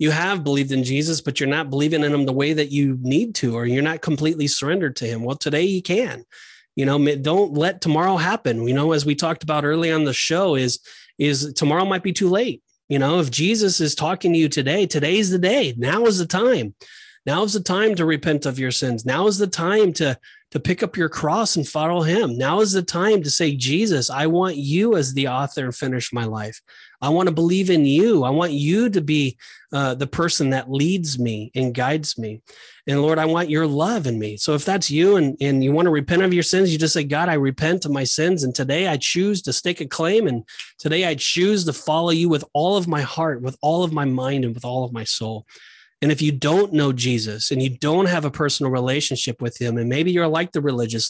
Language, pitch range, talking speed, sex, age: English, 135-175 Hz, 245 wpm, male, 30-49